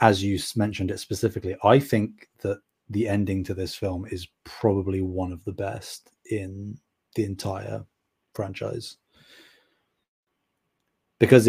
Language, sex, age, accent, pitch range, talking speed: English, male, 20-39, British, 95-115 Hz, 125 wpm